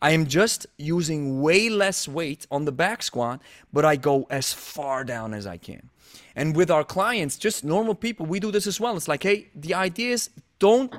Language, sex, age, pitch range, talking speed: English, male, 30-49, 140-185 Hz, 215 wpm